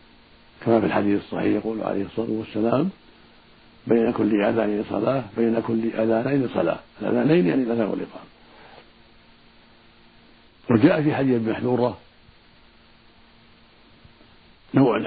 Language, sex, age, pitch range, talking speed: Arabic, male, 60-79, 110-115 Hz, 100 wpm